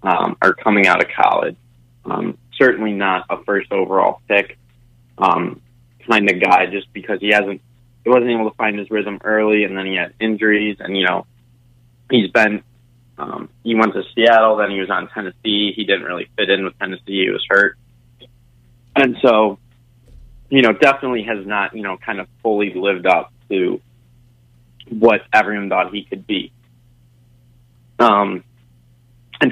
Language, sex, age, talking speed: English, male, 20-39, 165 wpm